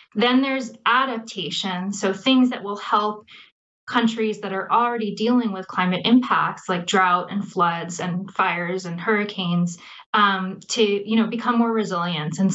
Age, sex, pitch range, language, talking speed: 20-39, female, 190-225 Hz, English, 145 wpm